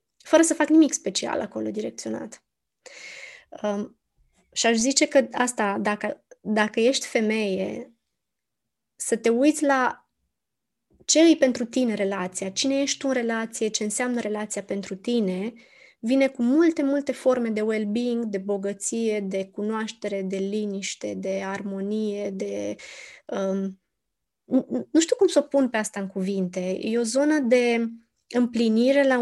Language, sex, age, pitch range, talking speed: Romanian, female, 20-39, 205-265 Hz, 140 wpm